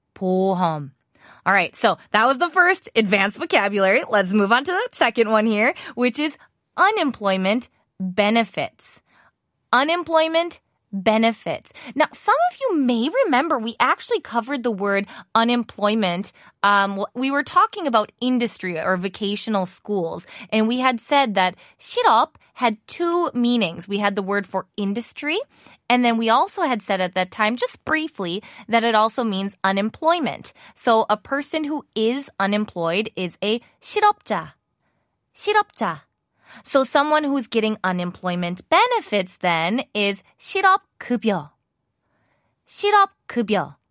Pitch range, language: 190-275 Hz, Korean